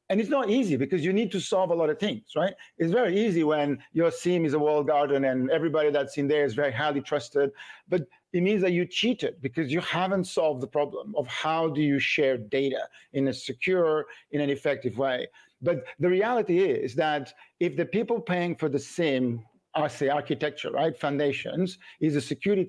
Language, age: English, 50-69